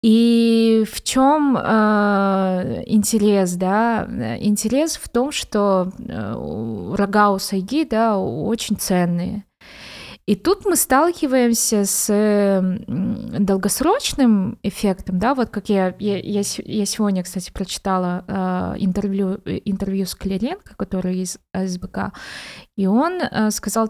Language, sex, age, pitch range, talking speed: Russian, female, 20-39, 190-225 Hz, 105 wpm